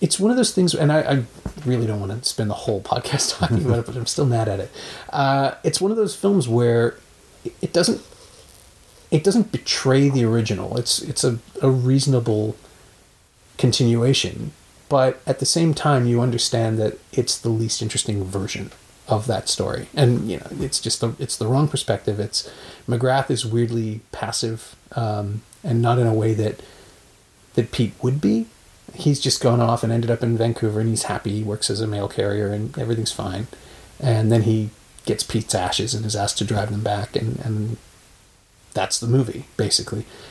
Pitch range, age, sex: 105-130 Hz, 30-49, male